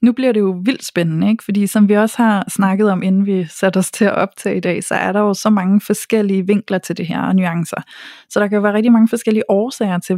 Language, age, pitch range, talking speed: Danish, 30-49, 195-230 Hz, 270 wpm